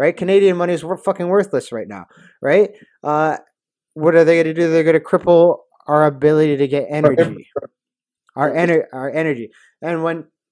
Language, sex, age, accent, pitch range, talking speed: English, male, 30-49, American, 130-160 Hz, 165 wpm